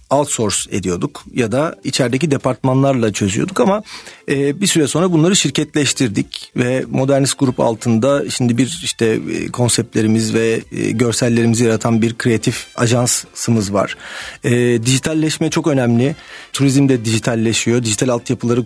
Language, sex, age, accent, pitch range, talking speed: Turkish, male, 40-59, native, 115-145 Hz, 115 wpm